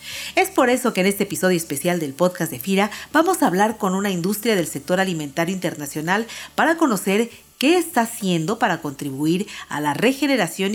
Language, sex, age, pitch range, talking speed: Spanish, female, 50-69, 170-235 Hz, 180 wpm